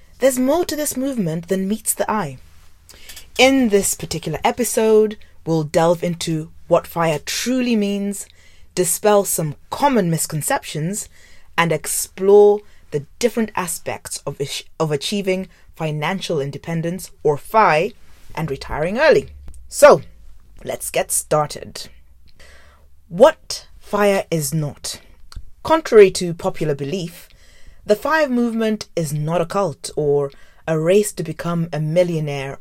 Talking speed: 120 wpm